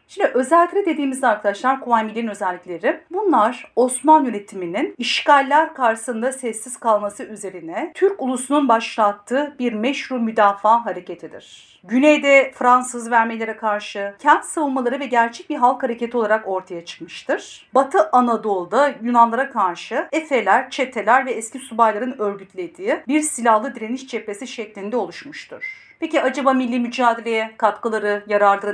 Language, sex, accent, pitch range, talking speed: Turkish, female, native, 215-275 Hz, 120 wpm